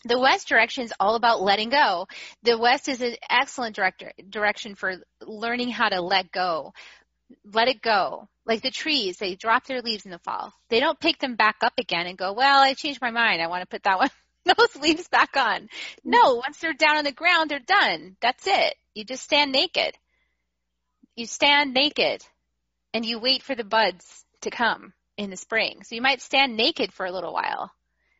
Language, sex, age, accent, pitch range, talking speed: English, female, 30-49, American, 195-260 Hz, 205 wpm